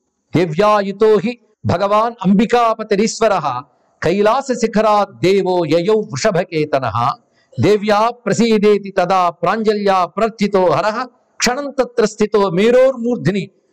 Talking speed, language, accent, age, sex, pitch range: 45 wpm, Telugu, native, 50-69, male, 160-215 Hz